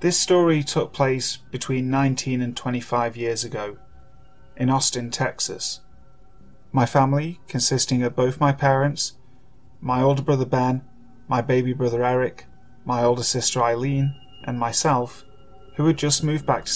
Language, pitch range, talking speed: English, 120-145 Hz, 145 wpm